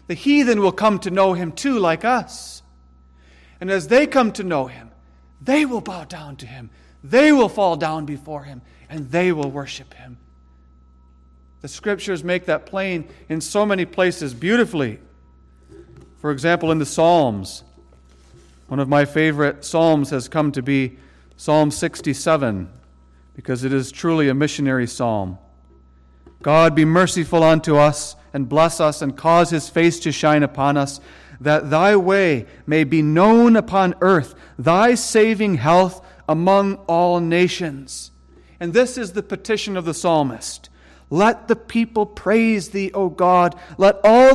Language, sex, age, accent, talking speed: English, male, 40-59, American, 155 wpm